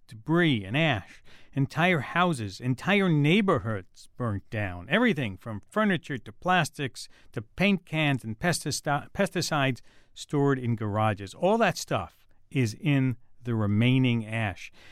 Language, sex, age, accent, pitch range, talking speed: English, male, 50-69, American, 120-185 Hz, 120 wpm